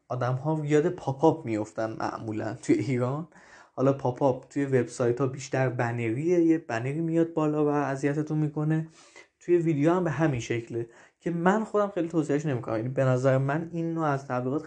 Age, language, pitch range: 20-39, Persian, 125-160 Hz